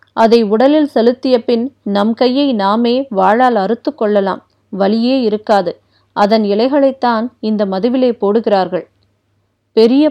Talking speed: 105 wpm